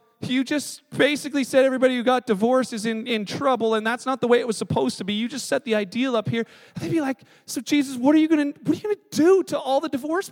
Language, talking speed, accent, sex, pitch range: English, 260 wpm, American, male, 240-300 Hz